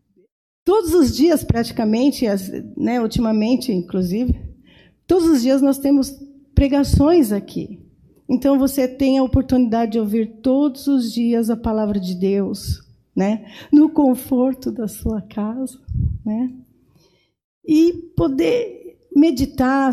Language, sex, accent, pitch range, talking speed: Portuguese, female, Brazilian, 210-285 Hz, 115 wpm